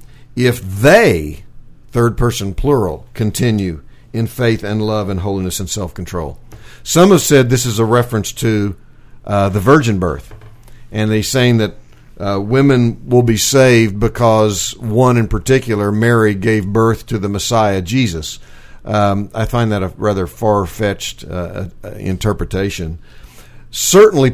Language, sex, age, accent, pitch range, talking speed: English, male, 50-69, American, 100-125 Hz, 135 wpm